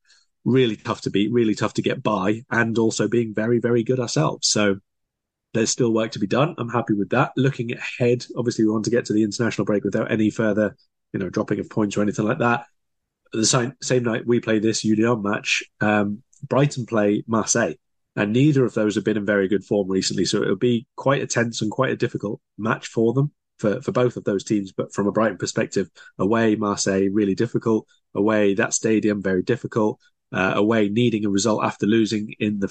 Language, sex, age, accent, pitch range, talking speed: English, male, 20-39, British, 105-125 Hz, 215 wpm